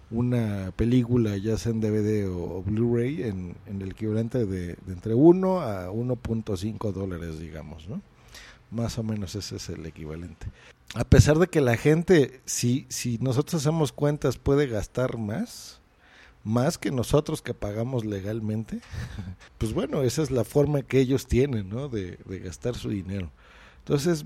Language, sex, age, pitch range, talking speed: Spanish, male, 50-69, 105-140 Hz, 160 wpm